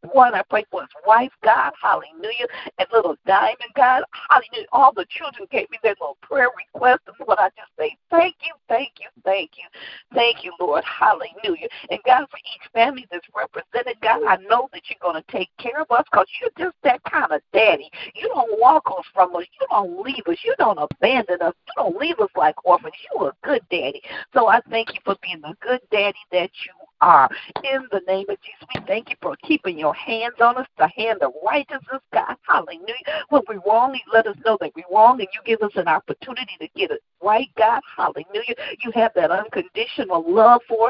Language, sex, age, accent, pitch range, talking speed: English, female, 50-69, American, 205-315 Hz, 215 wpm